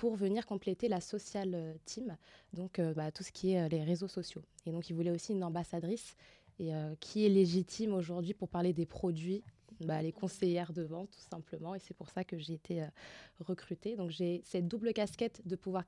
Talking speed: 215 wpm